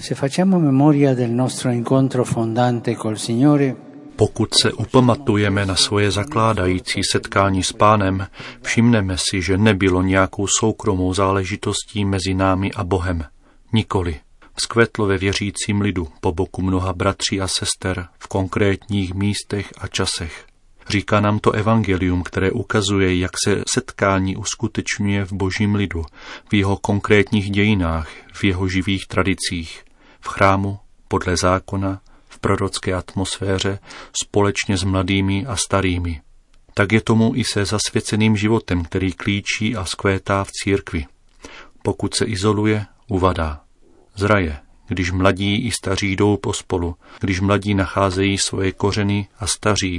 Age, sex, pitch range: 40-59, male, 95-105 Hz